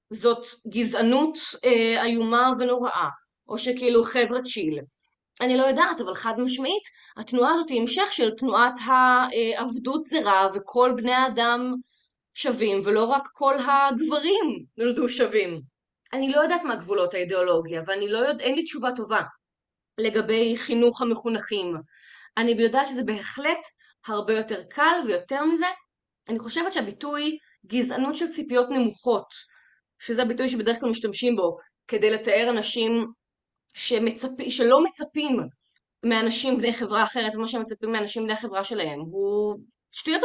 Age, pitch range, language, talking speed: 20-39, 225-285 Hz, Hebrew, 130 wpm